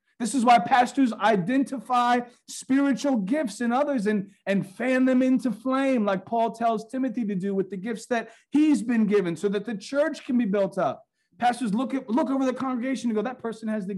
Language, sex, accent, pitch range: English, male, American, 200-265 Hz